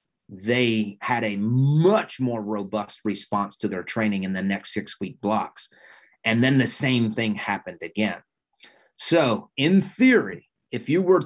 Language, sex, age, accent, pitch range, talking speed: English, male, 30-49, American, 110-135 Hz, 155 wpm